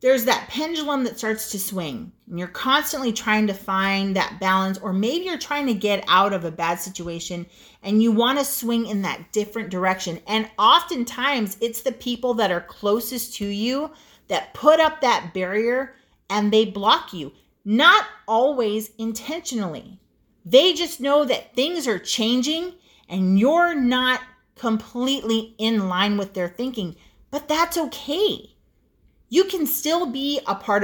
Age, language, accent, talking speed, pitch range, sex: 40-59, English, American, 160 wpm, 195-265 Hz, female